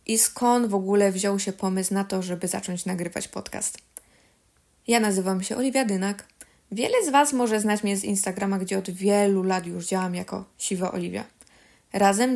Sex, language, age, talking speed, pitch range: female, Polish, 20-39, 175 wpm, 190-220 Hz